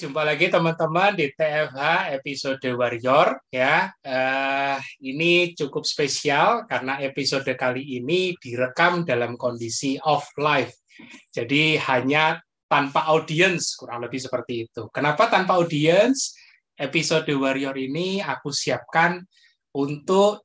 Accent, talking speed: native, 110 wpm